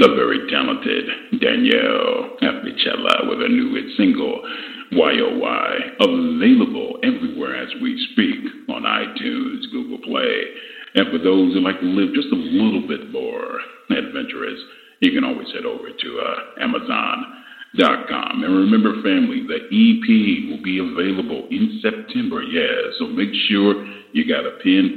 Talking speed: 145 wpm